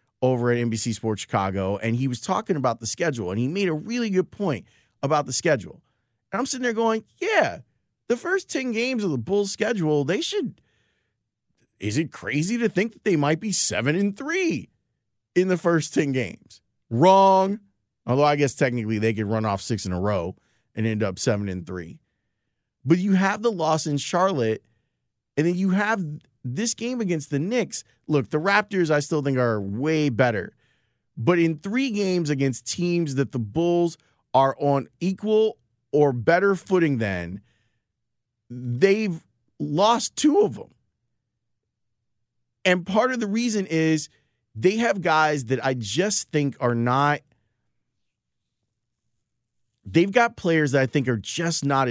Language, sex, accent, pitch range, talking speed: English, male, American, 115-185 Hz, 165 wpm